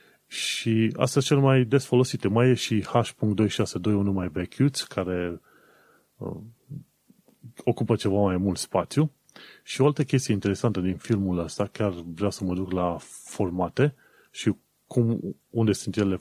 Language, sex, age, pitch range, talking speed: Romanian, male, 30-49, 100-125 Hz, 150 wpm